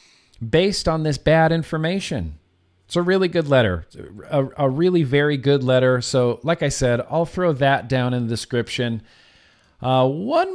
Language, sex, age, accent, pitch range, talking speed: English, male, 40-59, American, 130-190 Hz, 165 wpm